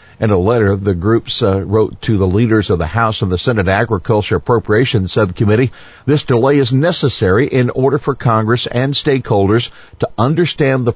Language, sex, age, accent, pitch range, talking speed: English, male, 60-79, American, 105-140 Hz, 175 wpm